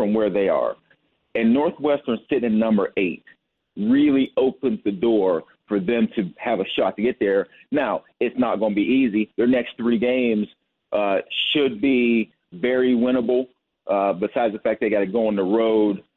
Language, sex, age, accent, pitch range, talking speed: English, male, 30-49, American, 105-130 Hz, 185 wpm